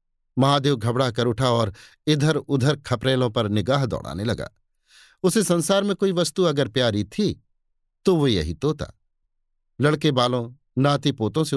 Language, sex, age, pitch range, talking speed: Hindi, male, 50-69, 115-160 Hz, 150 wpm